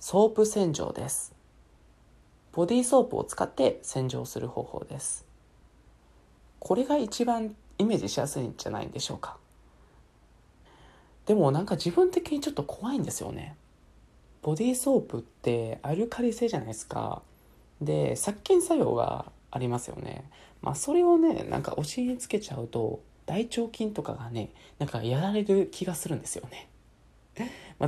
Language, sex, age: Japanese, male, 20-39